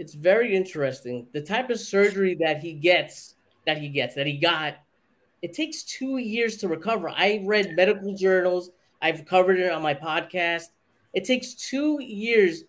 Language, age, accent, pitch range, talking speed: English, 20-39, American, 175-215 Hz, 170 wpm